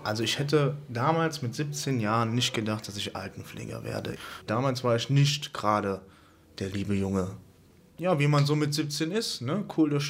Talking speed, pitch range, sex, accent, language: 185 wpm, 110-145 Hz, male, German, German